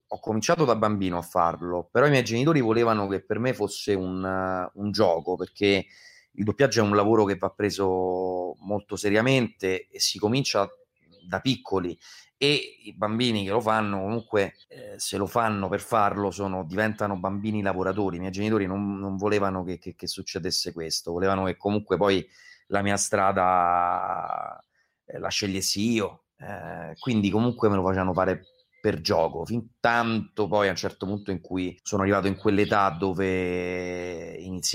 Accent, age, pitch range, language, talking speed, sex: native, 30-49, 90-110 Hz, Italian, 165 wpm, male